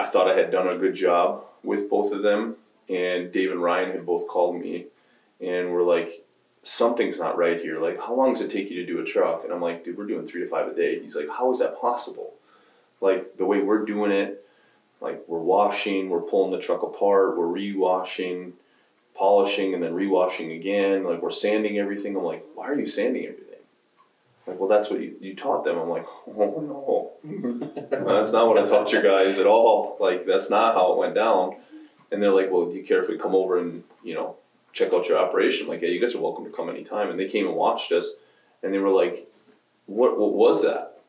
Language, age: English, 20-39